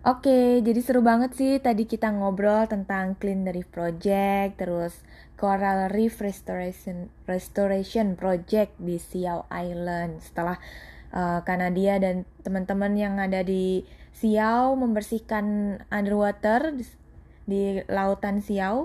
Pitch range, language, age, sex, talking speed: 180-210 Hz, Indonesian, 20-39, female, 125 wpm